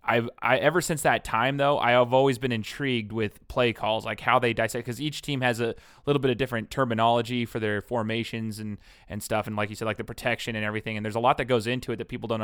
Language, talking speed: English, 255 wpm